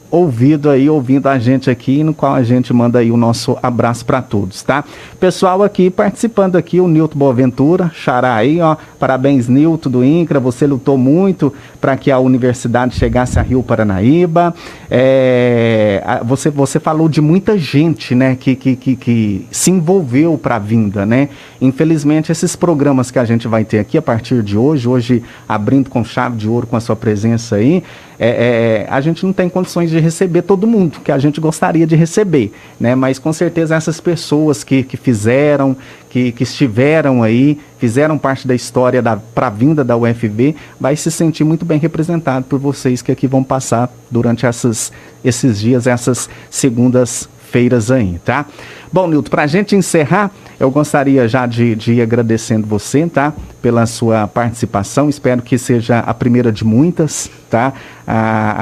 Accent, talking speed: Brazilian, 175 wpm